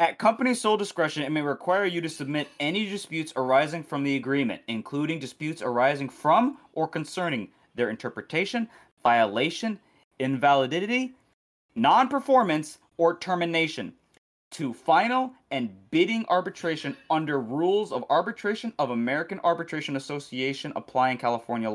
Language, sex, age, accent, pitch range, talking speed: English, male, 20-39, American, 145-205 Hz, 120 wpm